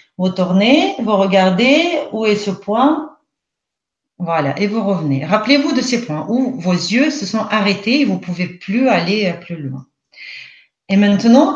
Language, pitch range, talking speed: French, 180-265 Hz, 160 wpm